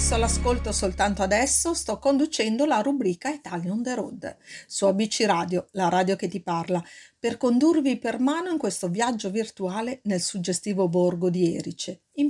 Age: 50-69